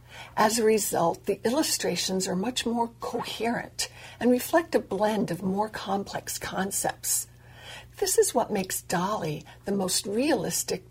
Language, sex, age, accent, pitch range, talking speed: English, female, 60-79, American, 185-255 Hz, 140 wpm